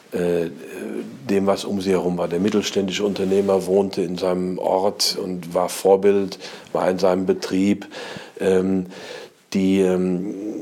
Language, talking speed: German, 125 wpm